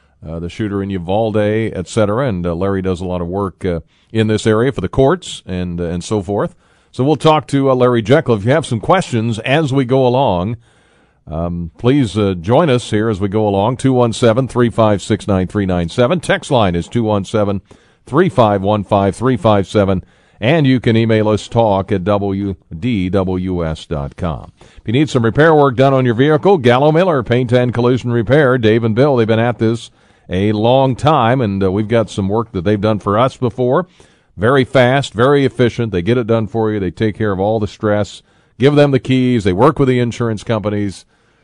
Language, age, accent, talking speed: English, 50-69, American, 190 wpm